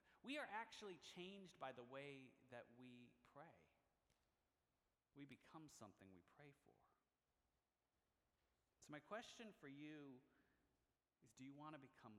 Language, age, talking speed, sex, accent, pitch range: English, 40-59, 130 wpm, male, American, 115-180 Hz